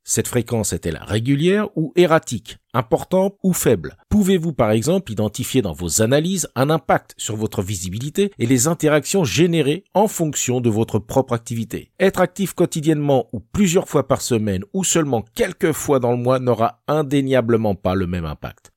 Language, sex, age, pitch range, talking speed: French, male, 50-69, 100-155 Hz, 165 wpm